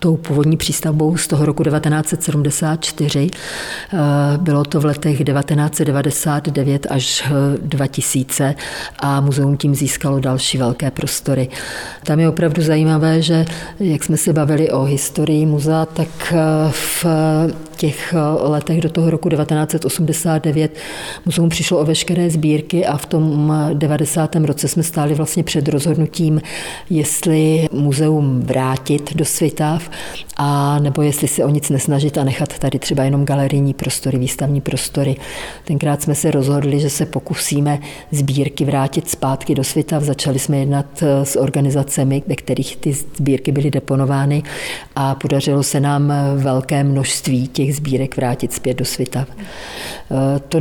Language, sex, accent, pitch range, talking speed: Czech, female, native, 140-155 Hz, 135 wpm